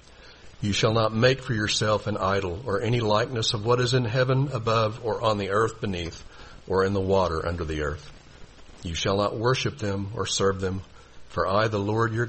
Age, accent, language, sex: 60-79, American, English, male